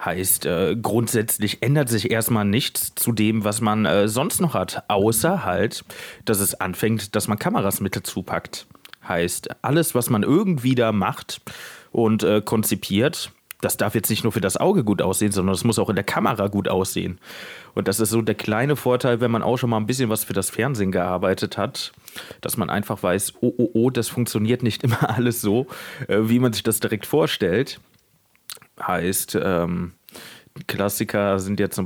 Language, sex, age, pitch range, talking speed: German, male, 30-49, 95-120 Hz, 185 wpm